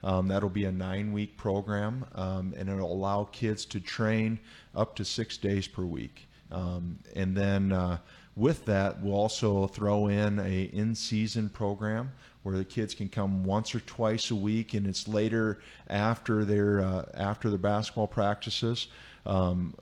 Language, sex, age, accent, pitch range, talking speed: English, male, 40-59, American, 95-105 Hz, 160 wpm